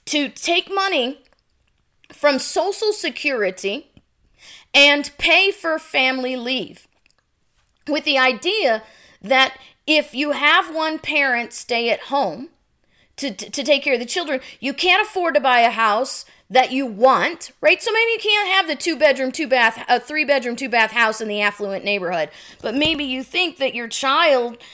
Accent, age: American, 30-49